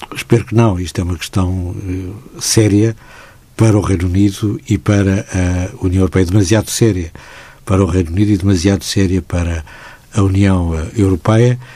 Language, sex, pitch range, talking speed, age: Portuguese, male, 95-115 Hz, 155 wpm, 60-79